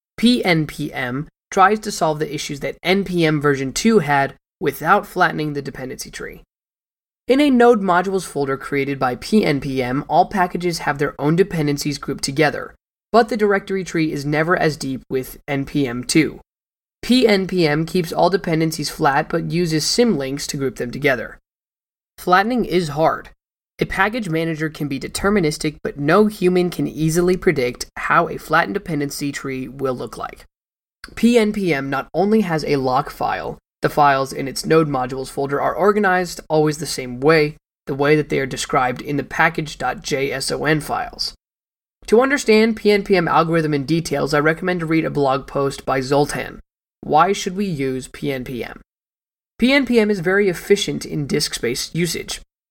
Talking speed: 155 wpm